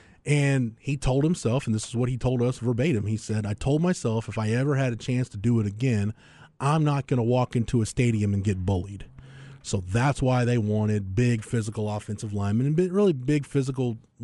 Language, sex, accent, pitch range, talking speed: English, male, American, 110-140 Hz, 215 wpm